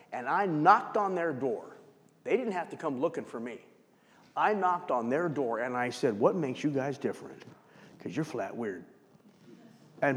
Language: English